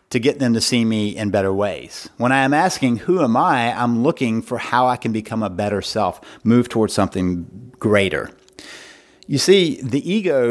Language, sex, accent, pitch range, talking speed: English, male, American, 105-130 Hz, 195 wpm